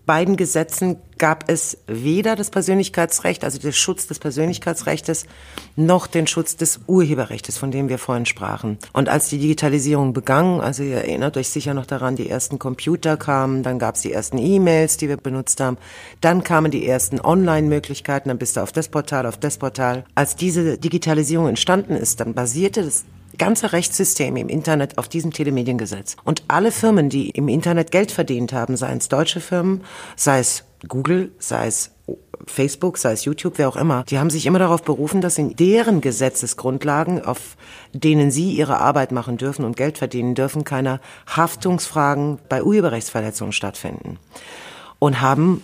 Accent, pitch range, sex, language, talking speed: German, 125-160 Hz, female, German, 170 wpm